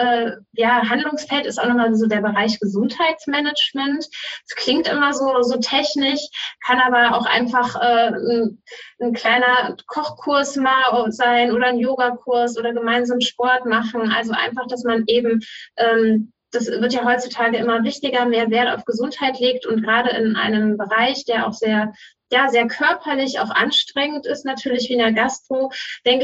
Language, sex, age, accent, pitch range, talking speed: German, female, 20-39, German, 215-250 Hz, 160 wpm